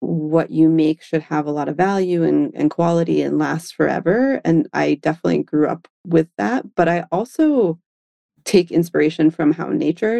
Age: 30-49